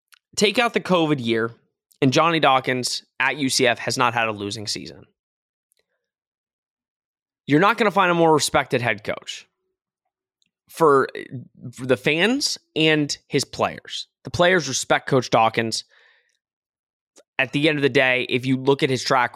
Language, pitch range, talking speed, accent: English, 120-150 Hz, 155 wpm, American